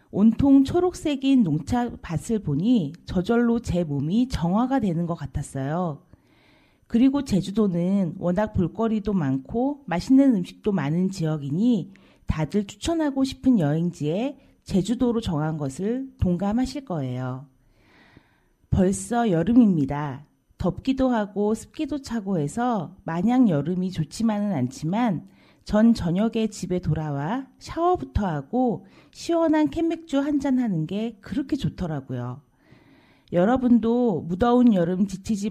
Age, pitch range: 40-59, 165-255 Hz